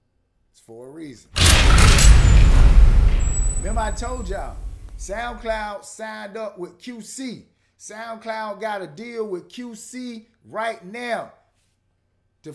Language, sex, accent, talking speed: English, male, American, 100 wpm